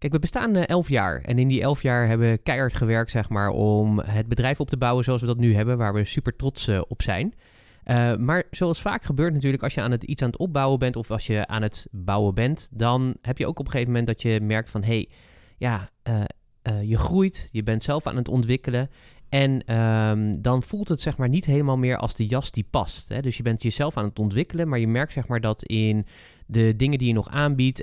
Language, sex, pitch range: Dutch, male, 110-135 Hz